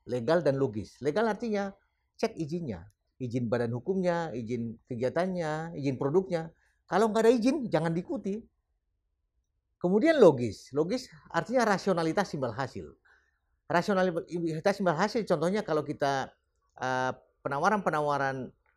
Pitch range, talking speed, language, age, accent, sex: 130-175 Hz, 110 wpm, Indonesian, 40-59, native, male